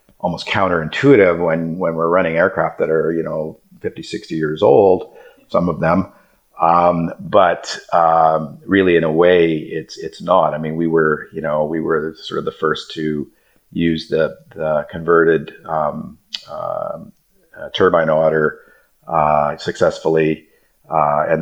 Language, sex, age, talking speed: English, male, 50-69, 150 wpm